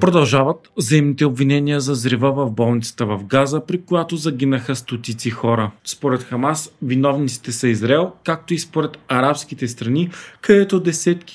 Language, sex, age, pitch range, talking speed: Bulgarian, male, 40-59, 120-150 Hz, 135 wpm